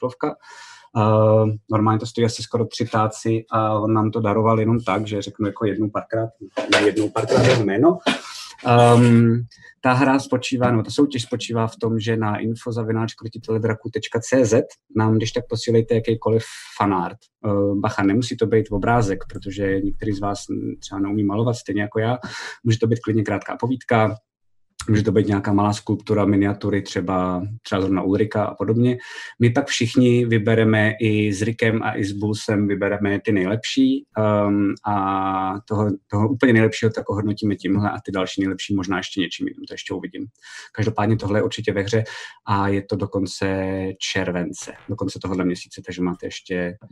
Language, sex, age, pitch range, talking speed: Czech, male, 20-39, 100-115 Hz, 170 wpm